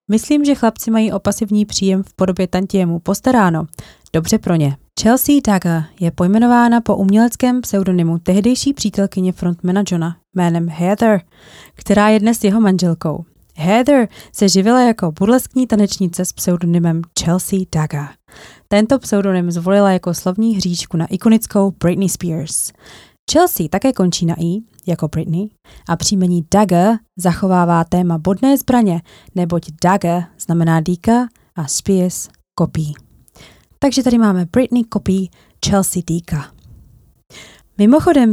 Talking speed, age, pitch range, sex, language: 125 wpm, 20-39, 175-225 Hz, female, Czech